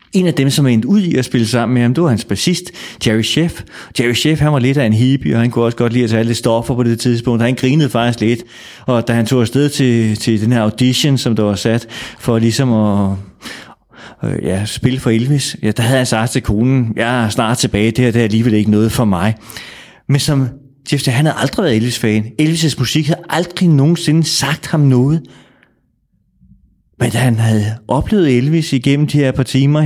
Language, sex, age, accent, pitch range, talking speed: Danish, male, 30-49, native, 115-145 Hz, 220 wpm